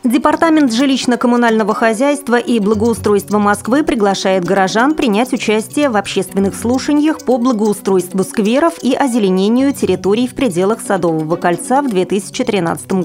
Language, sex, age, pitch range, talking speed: Russian, female, 30-49, 195-260 Hz, 115 wpm